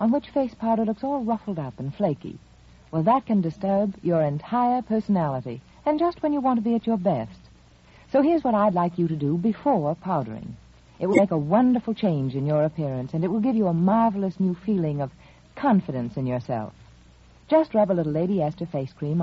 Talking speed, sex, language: 210 wpm, female, English